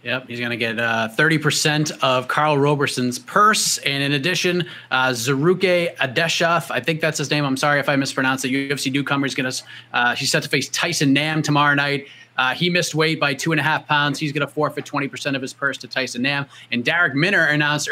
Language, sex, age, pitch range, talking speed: English, male, 30-49, 140-165 Hz, 220 wpm